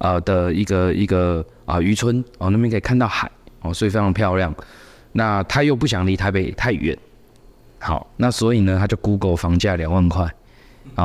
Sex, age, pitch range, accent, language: male, 20-39, 90-115 Hz, native, Chinese